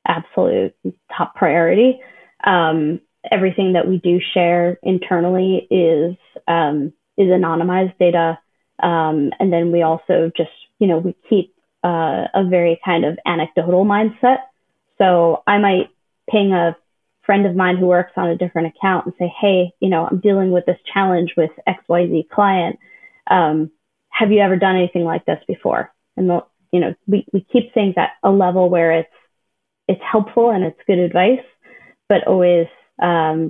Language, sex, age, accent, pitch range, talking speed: English, female, 20-39, American, 170-195 Hz, 165 wpm